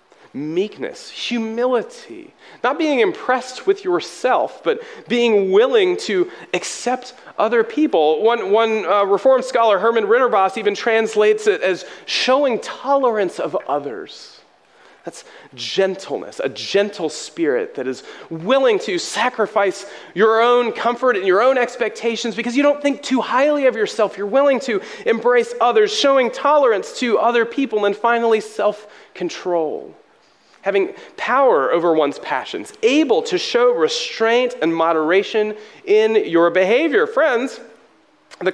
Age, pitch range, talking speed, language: 30-49, 215-365 Hz, 130 wpm, English